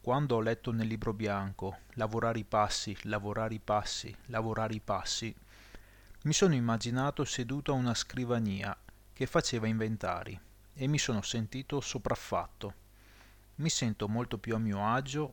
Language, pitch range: English, 105-125 Hz